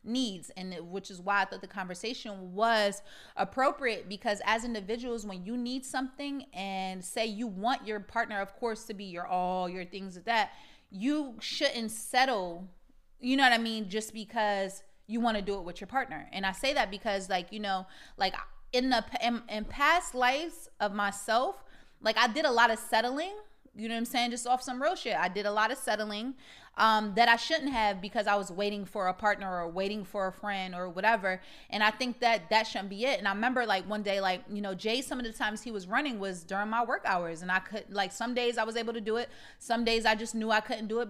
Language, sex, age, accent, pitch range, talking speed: English, female, 20-39, American, 195-245 Hz, 240 wpm